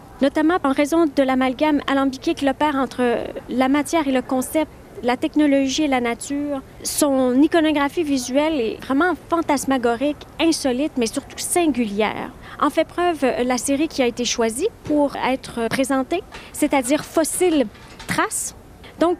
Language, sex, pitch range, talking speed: French, female, 255-315 Hz, 140 wpm